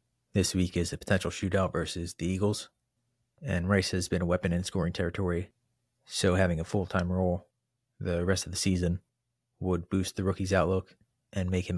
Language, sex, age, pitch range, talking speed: English, male, 30-49, 90-105 Hz, 185 wpm